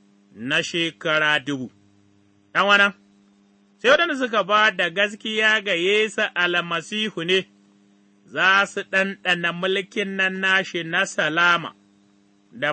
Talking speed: 85 wpm